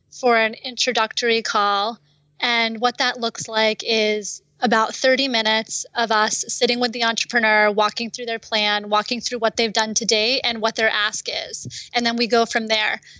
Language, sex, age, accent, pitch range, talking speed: English, female, 20-39, American, 220-250 Hz, 180 wpm